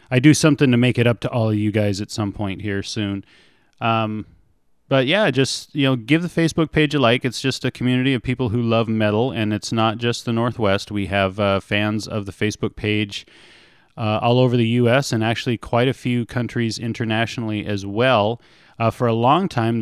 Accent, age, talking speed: American, 30-49, 215 wpm